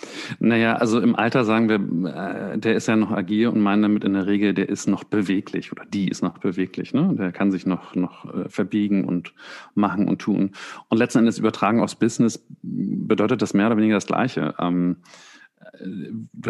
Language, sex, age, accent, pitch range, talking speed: German, male, 40-59, German, 95-110 Hz, 195 wpm